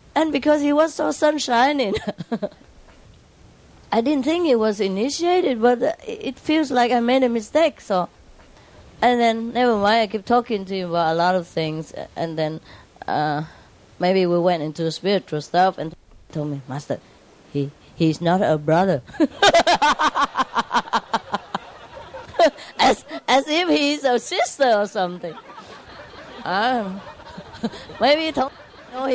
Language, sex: English, female